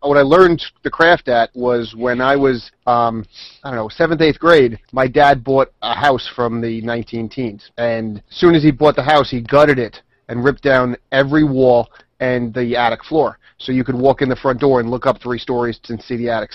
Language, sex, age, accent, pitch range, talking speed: English, male, 30-49, American, 115-135 Hz, 225 wpm